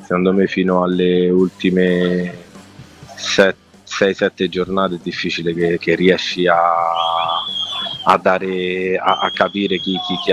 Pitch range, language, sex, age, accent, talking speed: 90-95 Hz, Italian, male, 20-39, native, 130 wpm